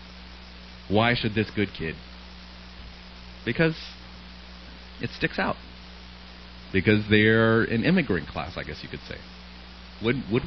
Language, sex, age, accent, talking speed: English, male, 30-49, American, 120 wpm